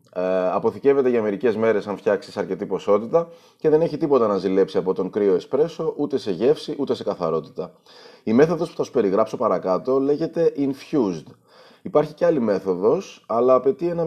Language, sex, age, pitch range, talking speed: Greek, male, 30-49, 110-155 Hz, 175 wpm